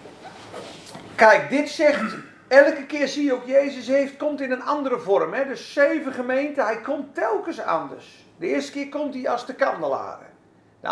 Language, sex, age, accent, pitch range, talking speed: Dutch, male, 50-69, Dutch, 225-285 Hz, 175 wpm